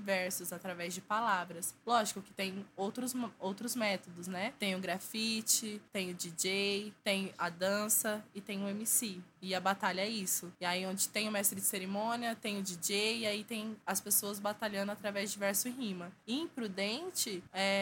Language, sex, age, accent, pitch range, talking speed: Portuguese, female, 20-39, Brazilian, 195-230 Hz, 175 wpm